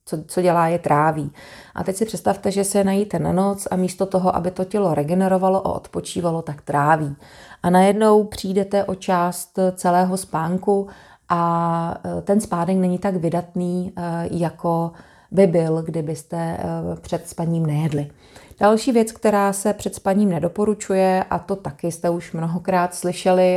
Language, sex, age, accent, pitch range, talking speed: Czech, female, 30-49, native, 165-190 Hz, 150 wpm